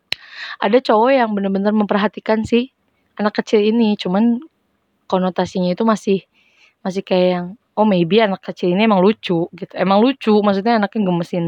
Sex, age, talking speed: female, 20-39, 150 wpm